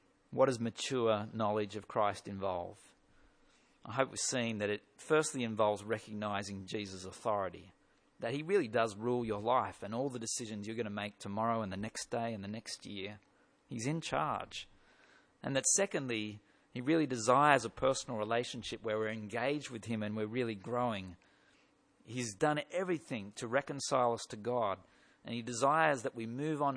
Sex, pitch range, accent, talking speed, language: male, 110-135 Hz, Australian, 175 wpm, English